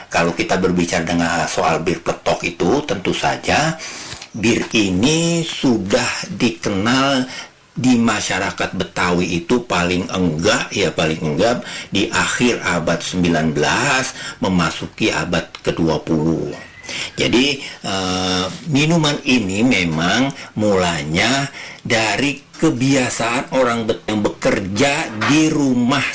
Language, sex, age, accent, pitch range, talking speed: Indonesian, male, 60-79, native, 85-120 Hz, 95 wpm